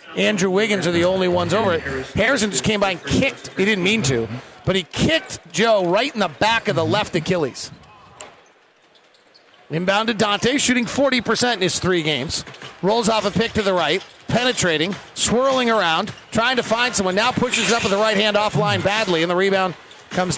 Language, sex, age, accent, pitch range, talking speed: English, male, 40-59, American, 190-230 Hz, 195 wpm